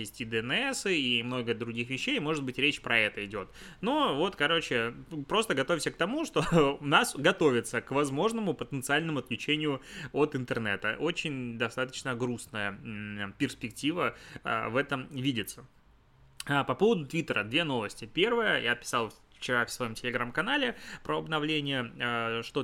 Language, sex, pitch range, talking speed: Russian, male, 120-150 Hz, 140 wpm